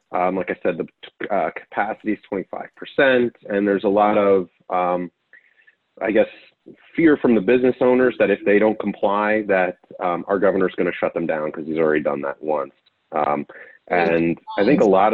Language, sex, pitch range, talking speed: English, male, 85-105 Hz, 185 wpm